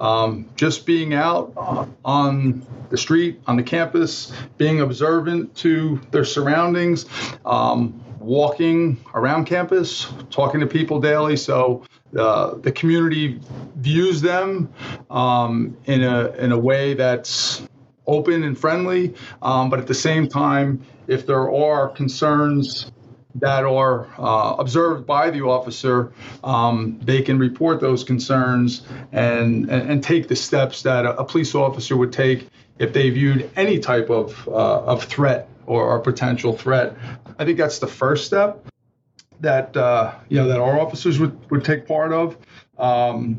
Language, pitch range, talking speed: English, 125-155 Hz, 150 wpm